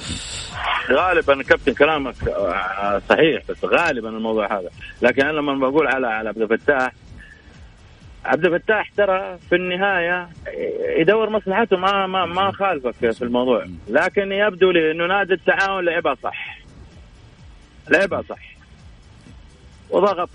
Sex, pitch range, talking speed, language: male, 125-175 Hz, 110 wpm, English